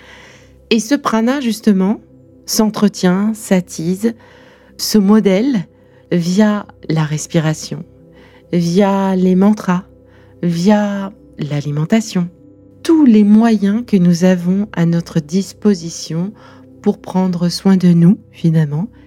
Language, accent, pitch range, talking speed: French, French, 160-215 Hz, 100 wpm